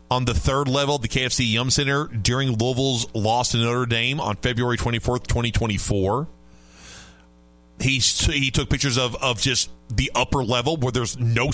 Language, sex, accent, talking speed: English, male, American, 160 wpm